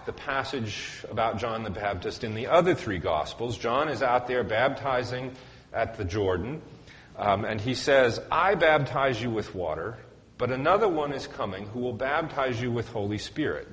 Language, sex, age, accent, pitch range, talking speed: English, male, 40-59, American, 105-135 Hz, 175 wpm